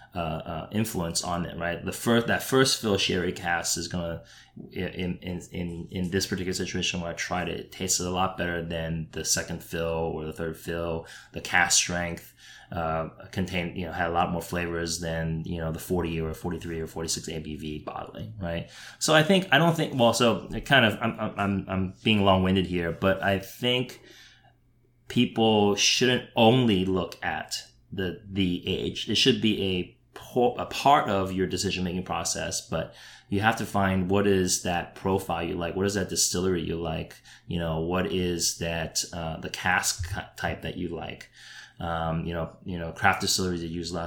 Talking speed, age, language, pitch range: 195 wpm, 20-39, English, 85-100 Hz